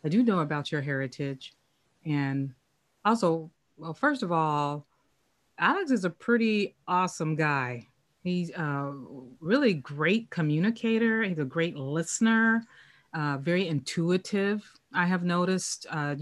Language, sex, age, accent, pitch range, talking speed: English, female, 30-49, American, 145-180 Hz, 125 wpm